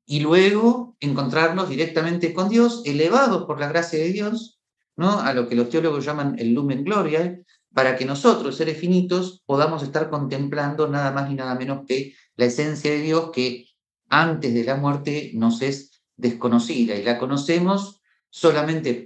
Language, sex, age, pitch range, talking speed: Spanish, male, 50-69, 130-195 Hz, 160 wpm